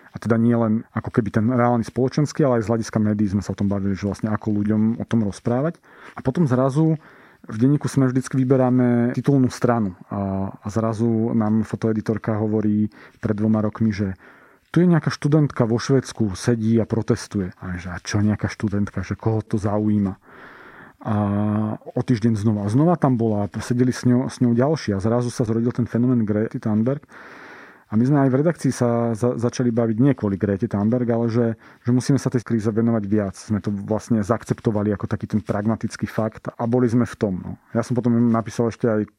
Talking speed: 200 wpm